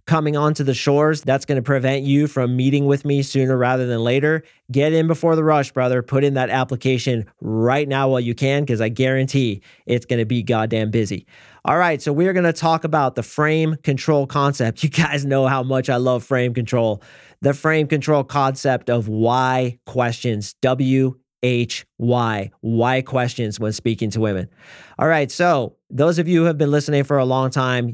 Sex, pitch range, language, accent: male, 120-140 Hz, English, American